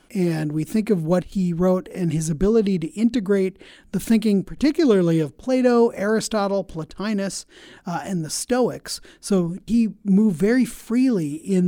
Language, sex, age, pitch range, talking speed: English, male, 40-59, 175-215 Hz, 150 wpm